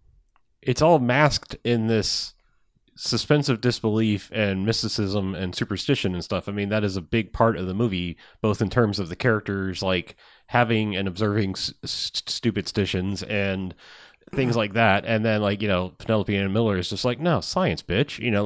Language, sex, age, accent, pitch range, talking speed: English, male, 30-49, American, 95-120 Hz, 185 wpm